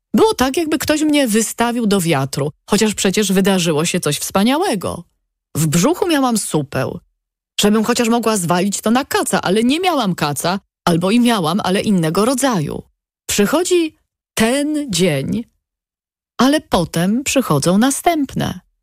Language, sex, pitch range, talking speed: Polish, female, 180-240 Hz, 135 wpm